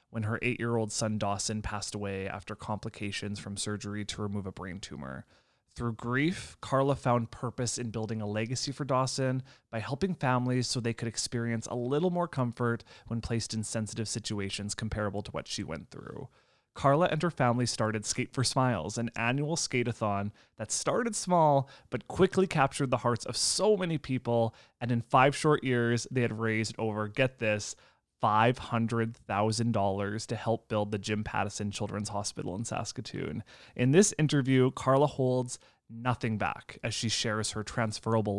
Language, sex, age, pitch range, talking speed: English, male, 20-39, 105-135 Hz, 165 wpm